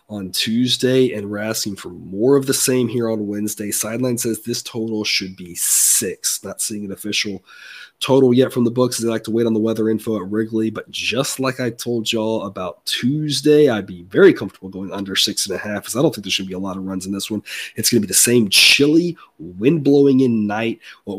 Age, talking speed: 30-49, 235 wpm